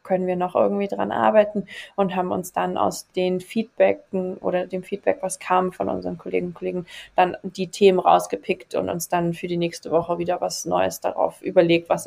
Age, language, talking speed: 20-39, German, 200 wpm